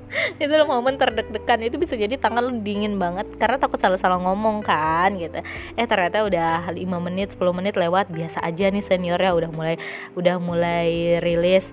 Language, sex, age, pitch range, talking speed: Indonesian, female, 20-39, 165-215 Hz, 165 wpm